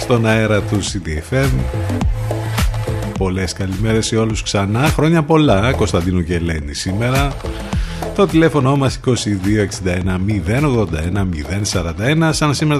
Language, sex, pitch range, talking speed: Greek, male, 95-140 Hz, 100 wpm